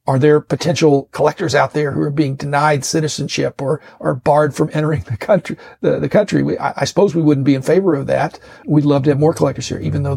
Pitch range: 135-155 Hz